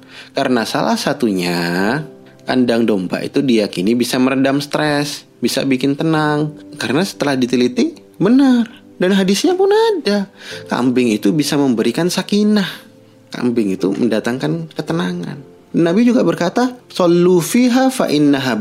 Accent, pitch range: native, 110-155 Hz